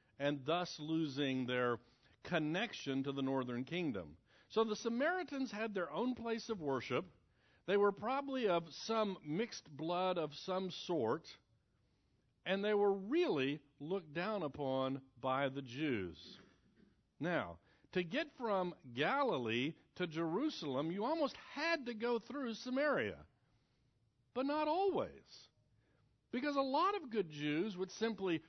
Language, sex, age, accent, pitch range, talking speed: English, male, 60-79, American, 135-225 Hz, 135 wpm